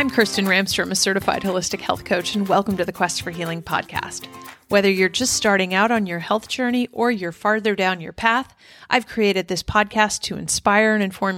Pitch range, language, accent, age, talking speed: 180-220 Hz, English, American, 30-49, 205 wpm